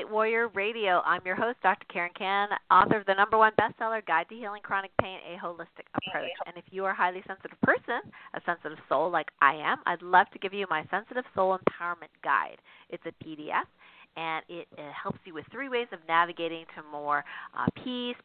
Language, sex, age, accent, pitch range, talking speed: English, female, 40-59, American, 160-200 Hz, 205 wpm